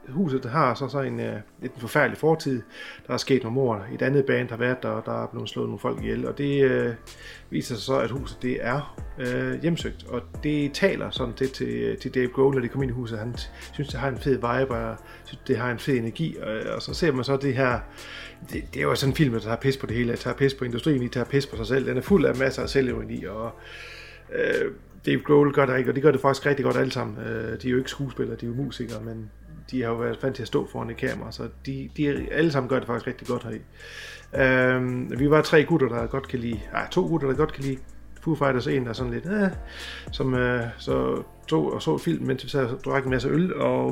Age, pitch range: 30-49, 120-140 Hz